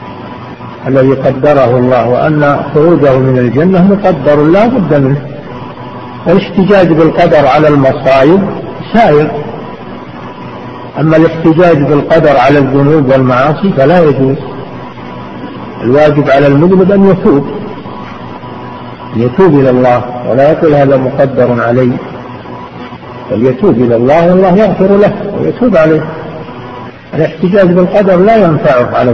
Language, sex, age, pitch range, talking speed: Arabic, male, 60-79, 130-165 Hz, 105 wpm